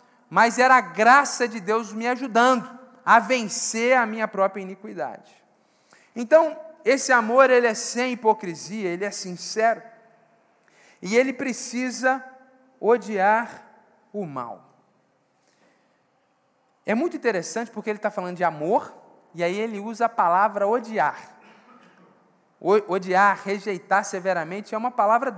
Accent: Brazilian